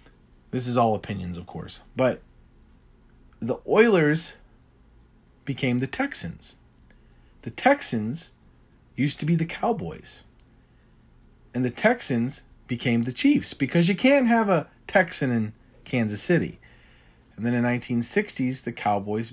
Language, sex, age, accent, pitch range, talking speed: English, male, 40-59, American, 115-155 Hz, 125 wpm